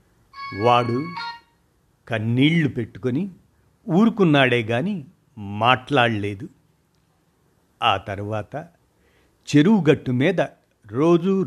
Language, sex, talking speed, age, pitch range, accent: Telugu, male, 60 wpm, 60-79, 110-140 Hz, native